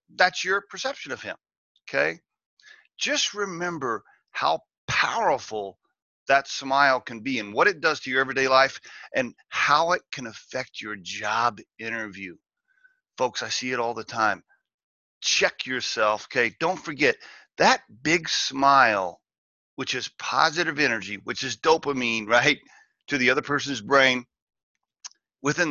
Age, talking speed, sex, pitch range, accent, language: 40-59, 140 wpm, male, 130-210 Hz, American, English